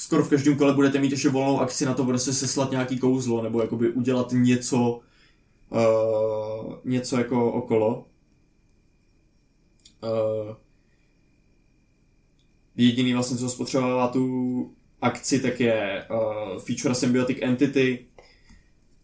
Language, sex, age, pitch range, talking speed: Czech, male, 20-39, 115-135 Hz, 120 wpm